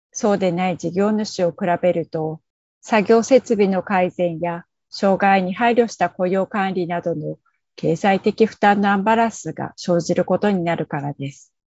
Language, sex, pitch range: Japanese, female, 170-210 Hz